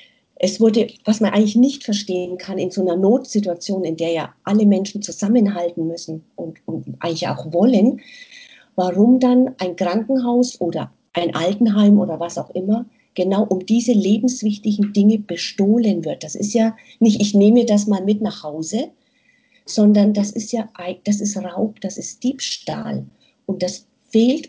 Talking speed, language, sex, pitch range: 160 wpm, German, female, 185-235 Hz